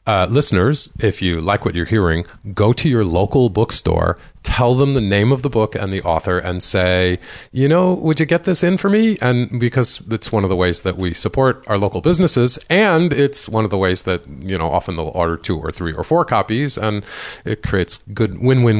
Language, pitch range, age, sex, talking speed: English, 90-130 Hz, 40-59, male, 225 wpm